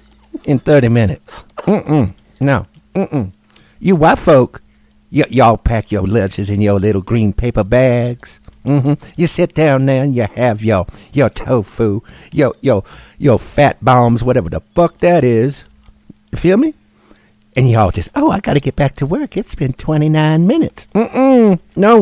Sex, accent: male, American